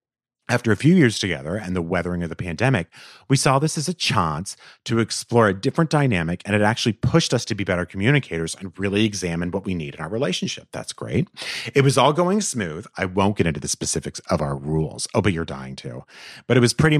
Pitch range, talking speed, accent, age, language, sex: 90-125 Hz, 230 wpm, American, 30-49, English, male